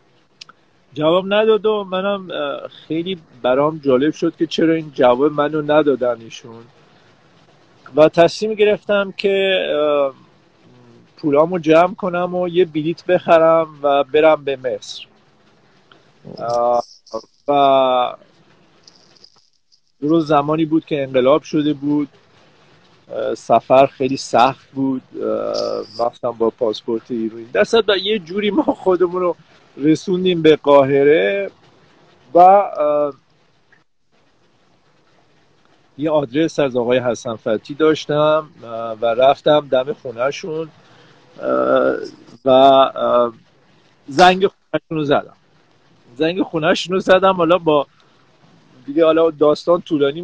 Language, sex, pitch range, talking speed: Persian, male, 135-175 Hz, 100 wpm